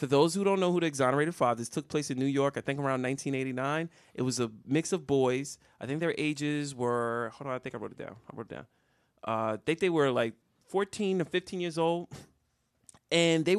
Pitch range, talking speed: 120-150 Hz, 245 wpm